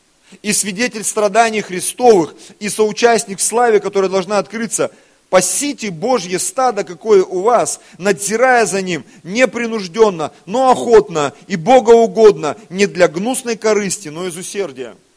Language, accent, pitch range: Russian, native, 160-210 Hz